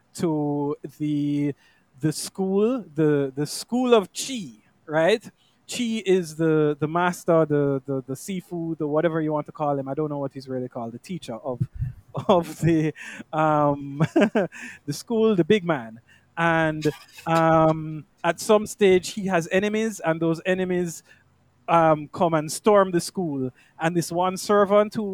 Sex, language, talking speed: male, English, 160 wpm